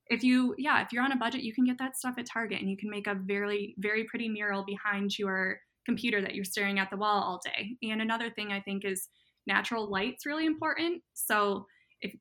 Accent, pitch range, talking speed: American, 195-225 Hz, 235 wpm